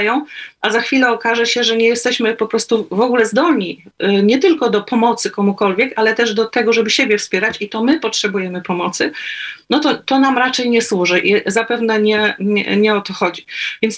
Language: Polish